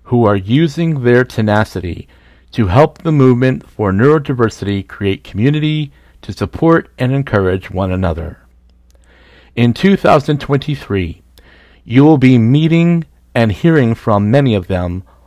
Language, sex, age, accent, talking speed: English, male, 50-69, American, 120 wpm